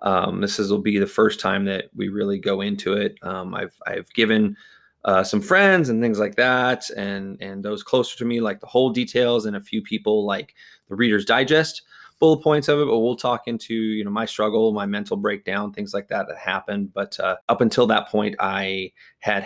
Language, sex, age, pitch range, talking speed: English, male, 20-39, 100-125 Hz, 220 wpm